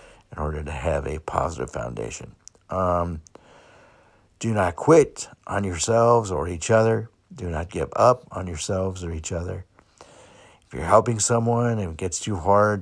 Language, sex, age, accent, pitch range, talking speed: English, male, 60-79, American, 85-105 Hz, 160 wpm